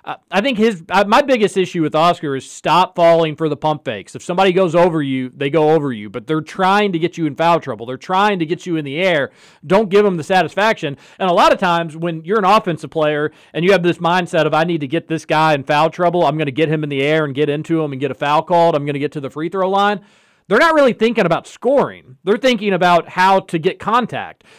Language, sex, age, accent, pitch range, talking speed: English, male, 40-59, American, 155-205 Hz, 270 wpm